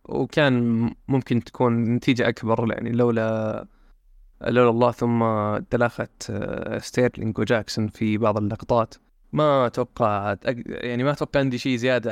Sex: male